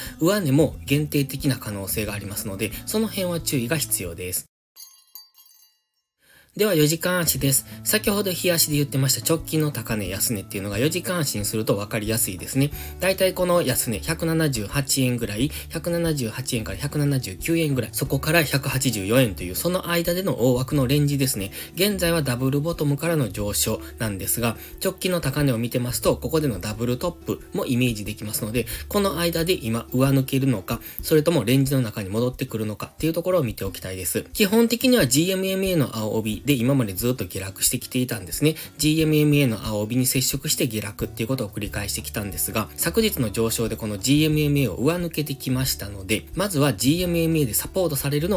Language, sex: Japanese, male